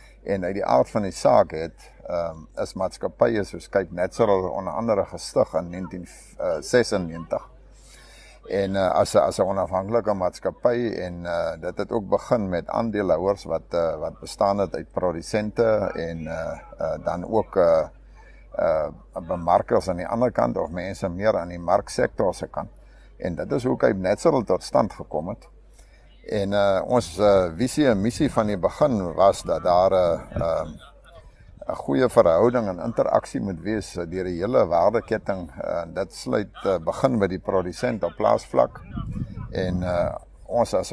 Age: 60-79